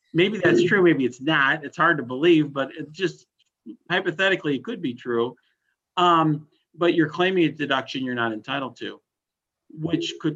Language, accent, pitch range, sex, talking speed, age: English, American, 120-165 Hz, male, 175 wpm, 50-69